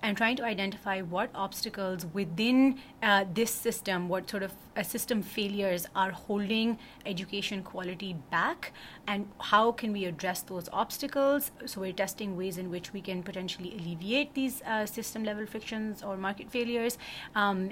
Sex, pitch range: female, 180-210 Hz